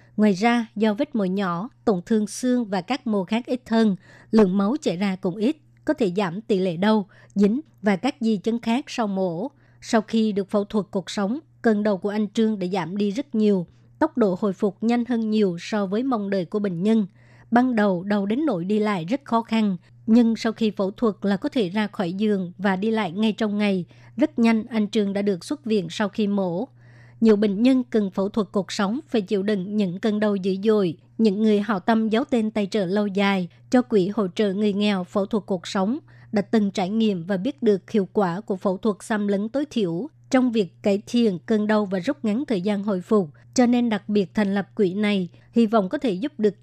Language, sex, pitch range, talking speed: Vietnamese, male, 195-225 Hz, 235 wpm